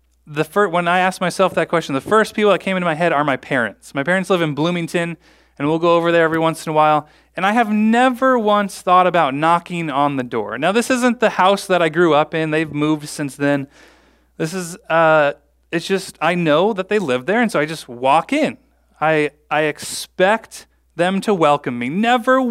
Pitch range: 145-195 Hz